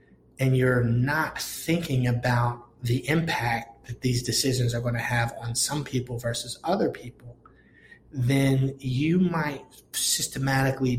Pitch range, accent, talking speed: 120-140 Hz, American, 125 wpm